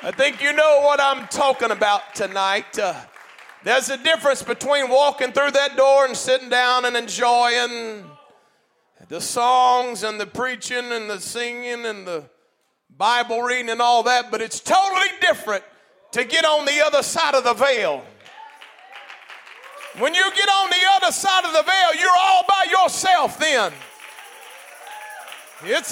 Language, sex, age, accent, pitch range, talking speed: English, male, 40-59, American, 255-375 Hz, 155 wpm